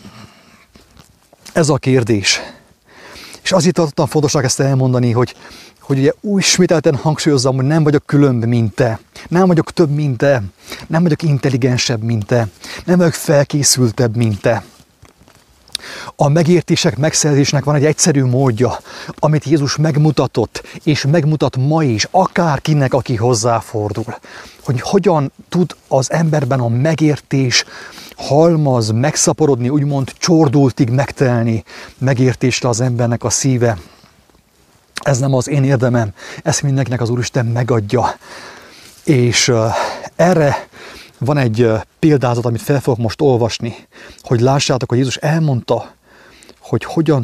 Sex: male